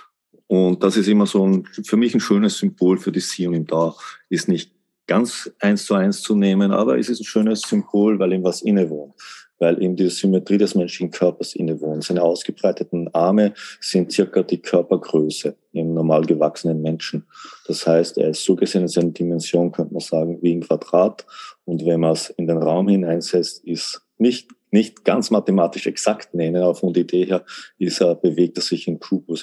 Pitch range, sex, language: 85-100 Hz, male, German